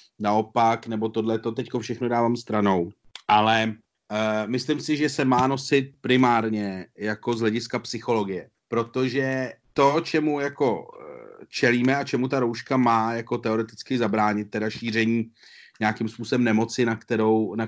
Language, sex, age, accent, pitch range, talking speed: Czech, male, 30-49, native, 105-130 Hz, 145 wpm